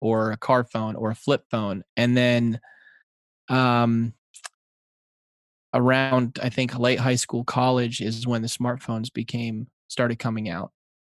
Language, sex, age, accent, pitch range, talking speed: English, male, 20-39, American, 115-130 Hz, 140 wpm